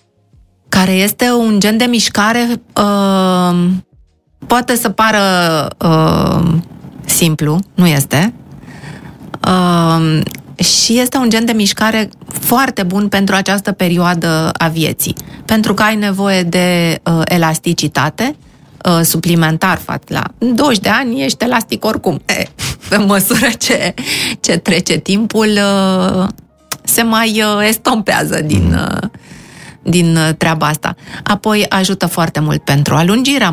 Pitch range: 160-210 Hz